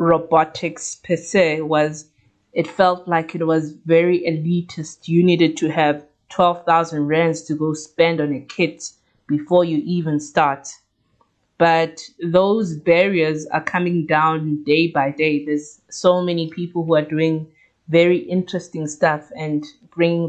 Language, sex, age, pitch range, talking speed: English, female, 20-39, 155-175 Hz, 140 wpm